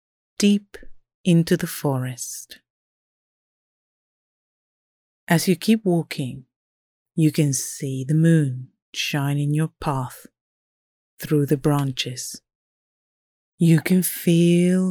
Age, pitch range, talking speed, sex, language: 40-59, 140-175 Hz, 95 wpm, female, English